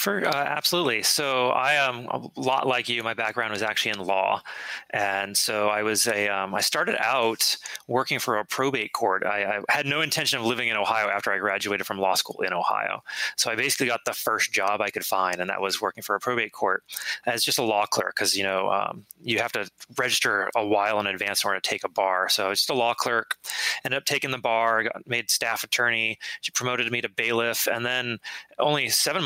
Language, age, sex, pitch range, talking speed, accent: English, 30-49, male, 100-120 Hz, 230 wpm, American